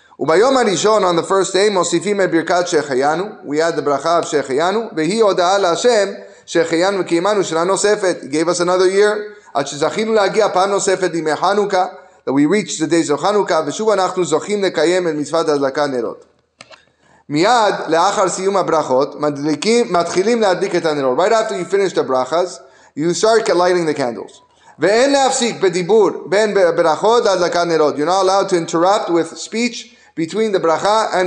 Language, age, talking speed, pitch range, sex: English, 30-49, 85 wpm, 170-215 Hz, male